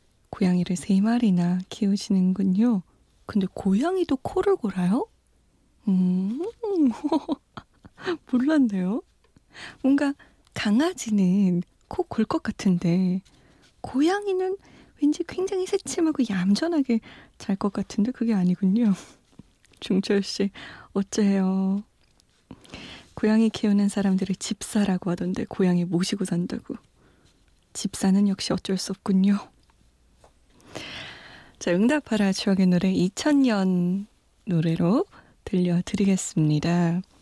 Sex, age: female, 20-39